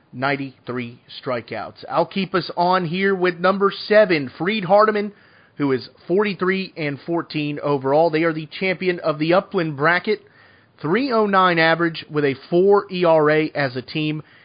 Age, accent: 30-49, American